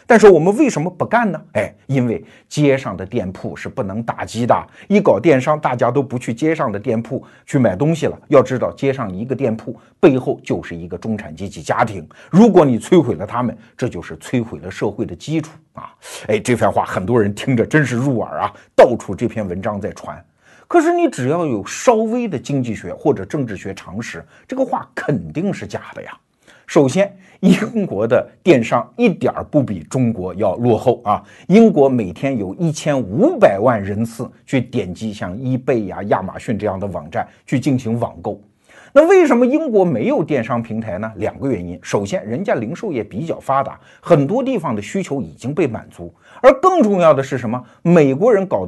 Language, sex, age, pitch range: Chinese, male, 50-69, 105-170 Hz